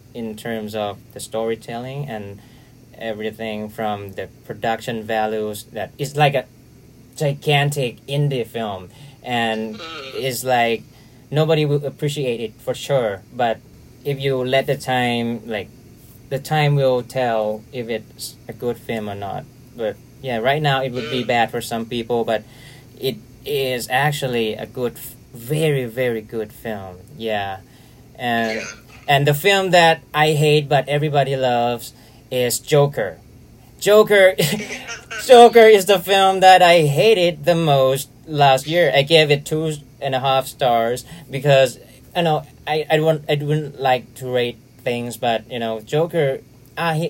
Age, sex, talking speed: 20-39, male, 150 wpm